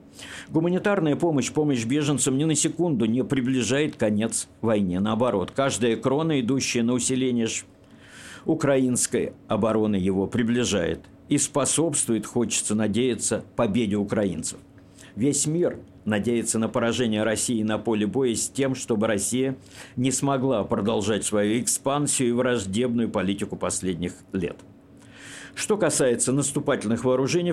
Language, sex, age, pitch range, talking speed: Russian, male, 50-69, 110-140 Hz, 120 wpm